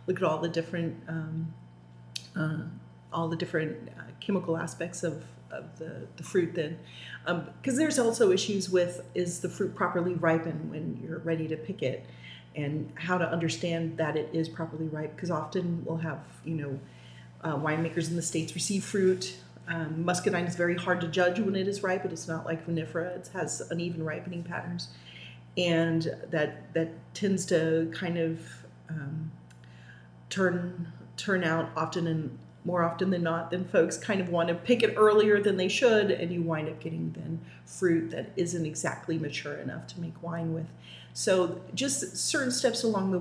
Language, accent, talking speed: English, American, 175 wpm